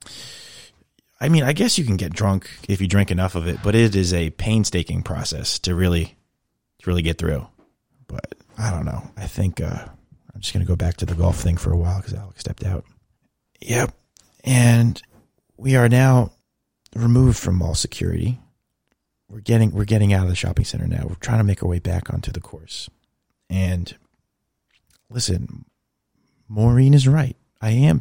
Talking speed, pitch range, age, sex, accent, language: 185 wpm, 90-115 Hz, 30-49, male, American, English